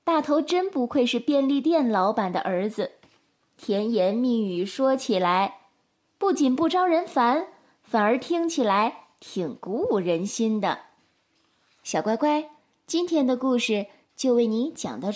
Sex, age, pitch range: female, 20-39, 220-315 Hz